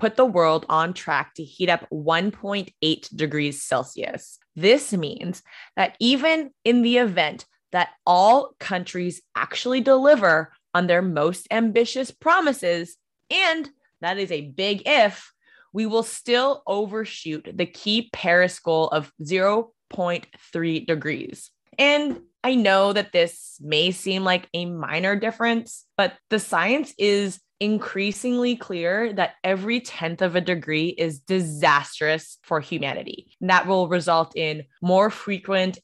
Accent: American